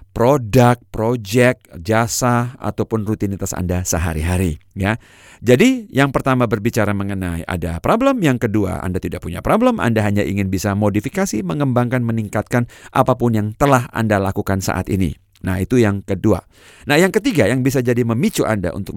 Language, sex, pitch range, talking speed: Indonesian, male, 95-135 Hz, 150 wpm